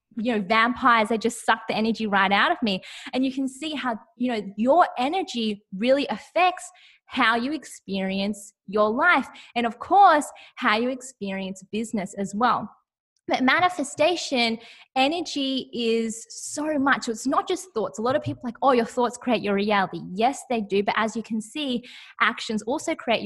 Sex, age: female, 20-39